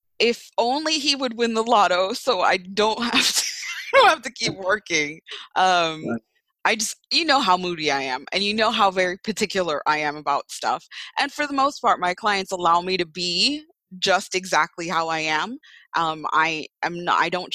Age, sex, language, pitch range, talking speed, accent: 20-39, female, English, 165-220 Hz, 200 wpm, American